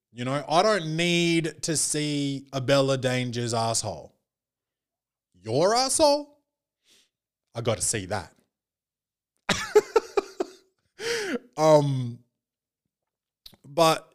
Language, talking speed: English, 80 wpm